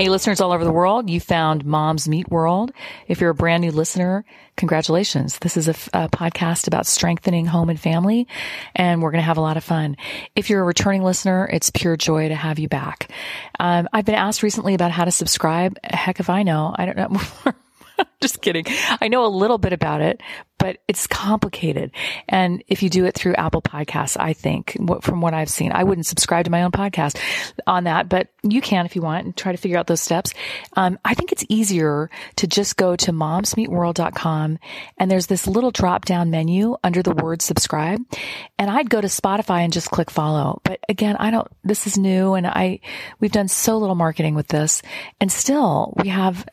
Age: 40-59